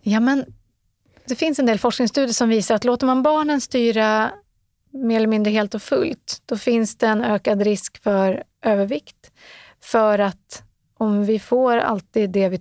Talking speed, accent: 170 wpm, native